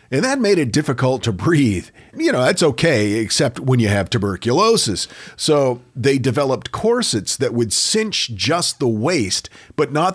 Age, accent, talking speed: 40-59, American, 165 wpm